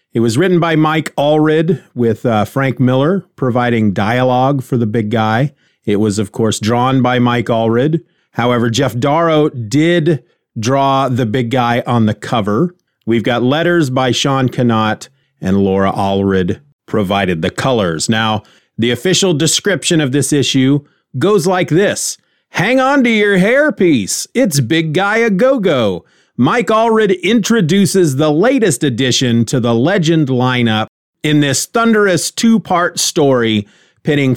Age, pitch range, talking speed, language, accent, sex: 40-59, 120-175 Hz, 145 wpm, English, American, male